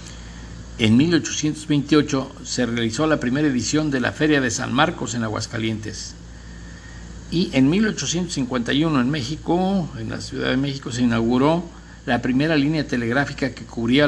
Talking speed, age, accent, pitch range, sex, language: 140 wpm, 60-79, Mexican, 110-140 Hz, male, Spanish